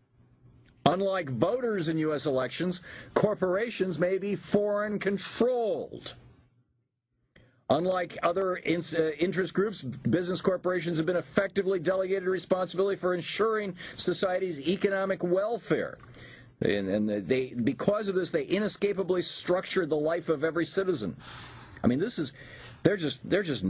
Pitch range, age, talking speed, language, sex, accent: 120-185 Hz, 50-69, 125 wpm, English, male, American